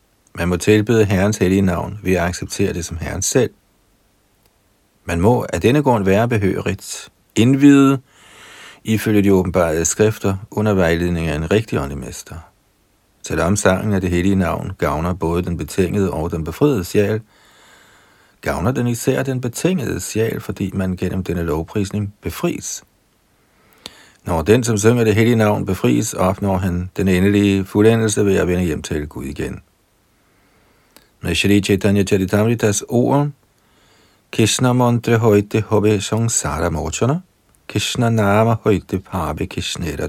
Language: Danish